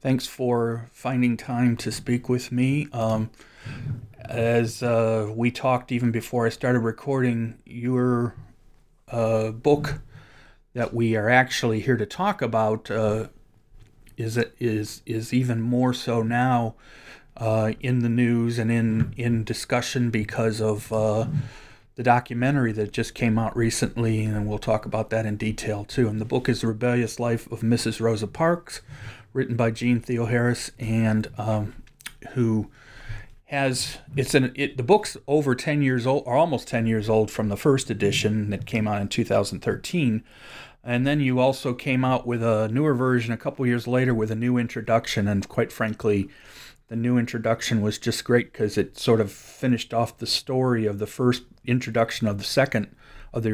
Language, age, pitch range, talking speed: English, 40-59, 110-125 Hz, 170 wpm